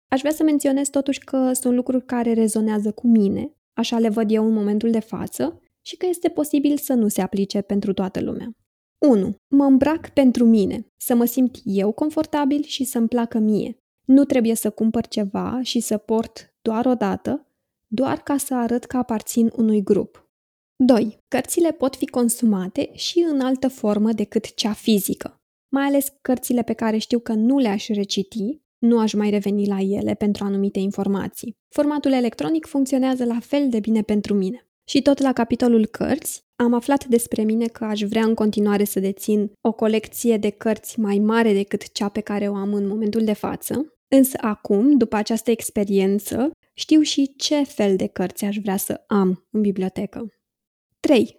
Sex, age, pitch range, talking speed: female, 20-39, 210-265 Hz, 180 wpm